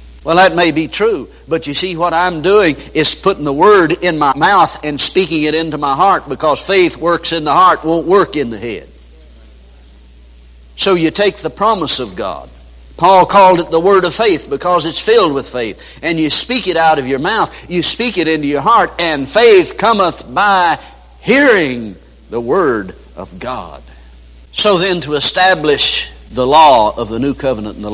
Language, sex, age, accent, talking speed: English, male, 60-79, American, 190 wpm